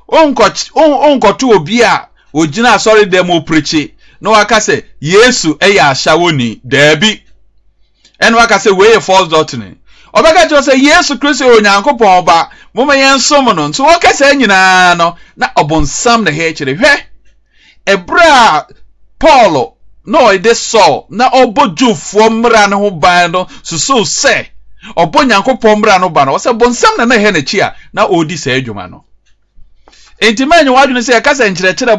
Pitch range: 160-245 Hz